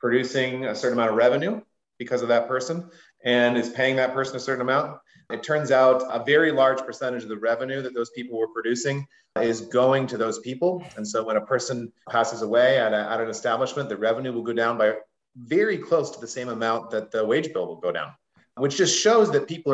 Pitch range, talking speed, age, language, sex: 125-185 Hz, 220 wpm, 30-49, English, male